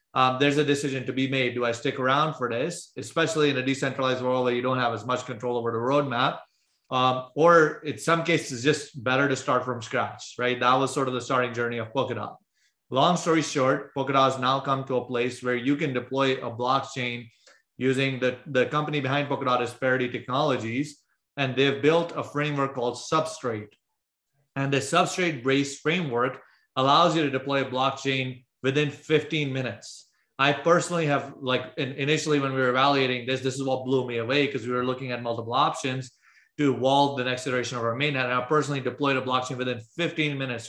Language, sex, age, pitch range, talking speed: English, male, 30-49, 125-145 Hz, 200 wpm